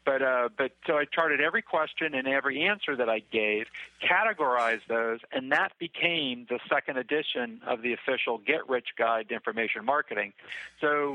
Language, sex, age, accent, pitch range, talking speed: English, male, 50-69, American, 120-150 Hz, 170 wpm